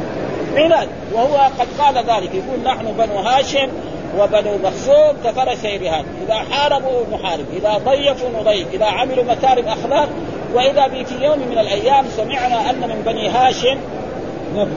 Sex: male